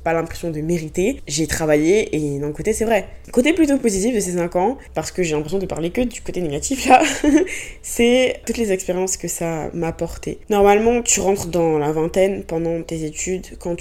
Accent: French